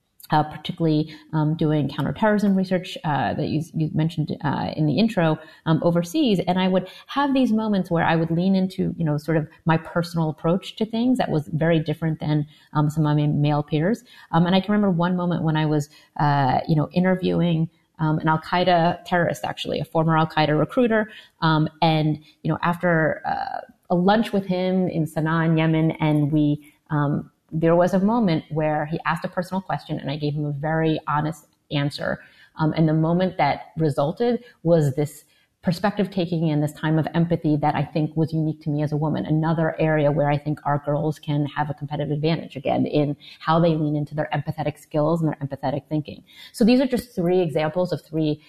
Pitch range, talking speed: 150-180 Hz, 205 wpm